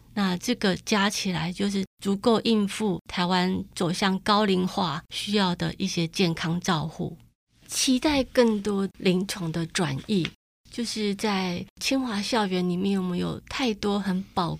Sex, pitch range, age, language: female, 180-210 Hz, 30-49, Chinese